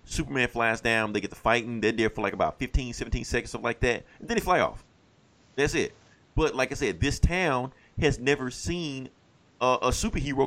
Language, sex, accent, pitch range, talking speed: English, male, American, 105-130 Hz, 220 wpm